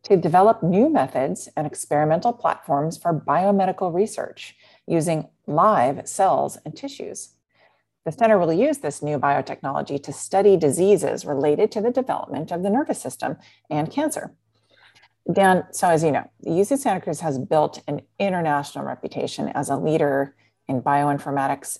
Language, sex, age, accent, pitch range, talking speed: English, female, 40-59, American, 145-205 Hz, 150 wpm